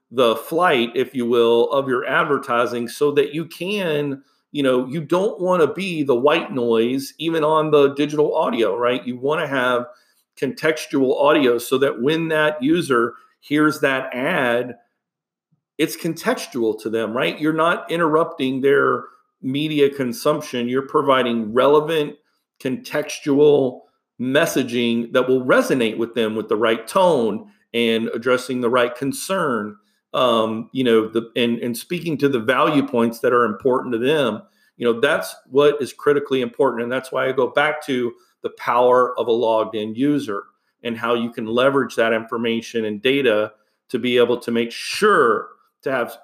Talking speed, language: 160 wpm, English